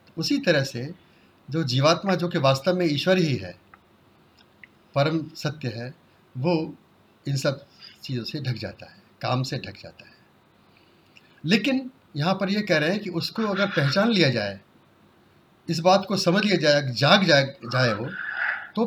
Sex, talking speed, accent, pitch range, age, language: male, 165 wpm, native, 130-170 Hz, 50-69, Hindi